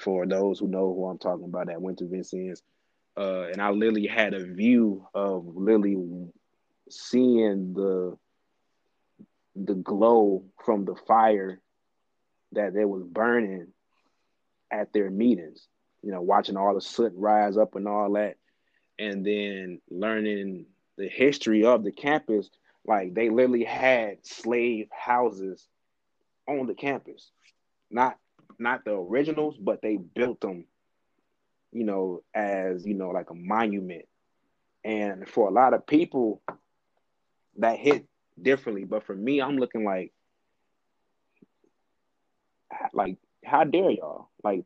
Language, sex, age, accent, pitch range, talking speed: English, male, 20-39, American, 95-115 Hz, 135 wpm